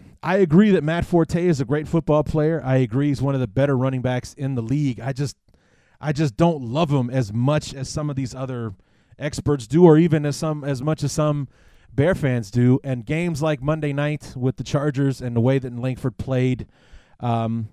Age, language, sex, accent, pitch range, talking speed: 30-49, English, male, American, 115-145 Hz, 215 wpm